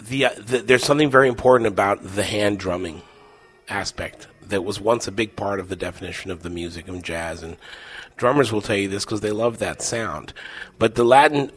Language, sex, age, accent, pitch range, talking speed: English, male, 30-49, American, 100-120 Hz, 195 wpm